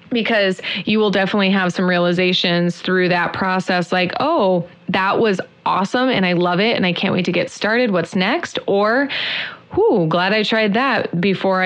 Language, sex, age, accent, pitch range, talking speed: English, female, 20-39, American, 180-220 Hz, 180 wpm